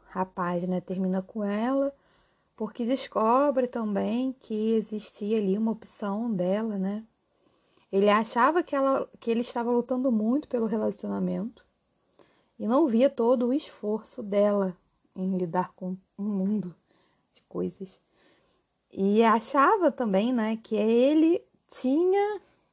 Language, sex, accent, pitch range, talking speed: Portuguese, female, Brazilian, 190-245 Hz, 125 wpm